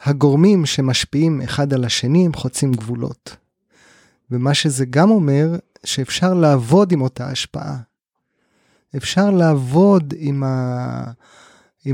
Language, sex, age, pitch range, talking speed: Hebrew, male, 30-49, 125-160 Hz, 105 wpm